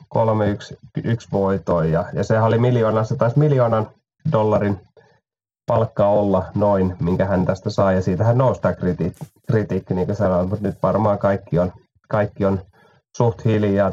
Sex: male